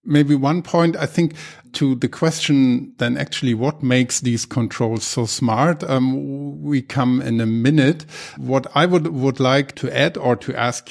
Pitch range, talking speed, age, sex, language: 120-145 Hz, 175 wpm, 50-69, male, German